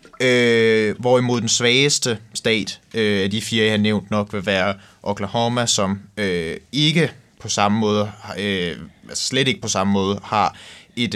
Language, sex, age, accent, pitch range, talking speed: English, male, 20-39, Danish, 100-125 Hz, 170 wpm